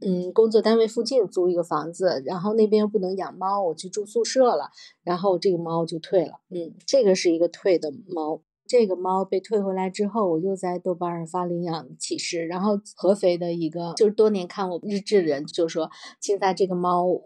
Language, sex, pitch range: Chinese, female, 175-215 Hz